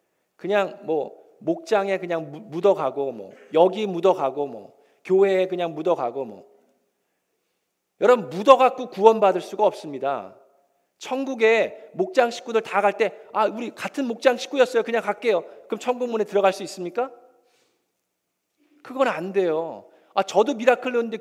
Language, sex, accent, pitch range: Korean, male, native, 170-230 Hz